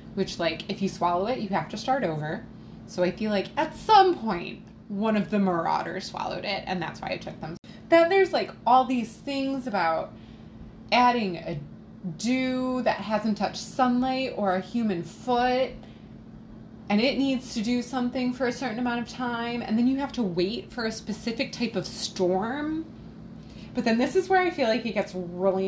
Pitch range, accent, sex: 195-250 Hz, American, female